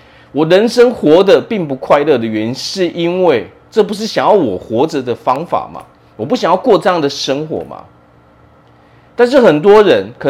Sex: male